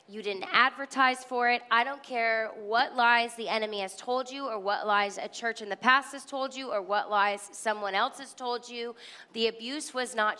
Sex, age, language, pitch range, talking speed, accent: female, 20-39, English, 205-240 Hz, 220 wpm, American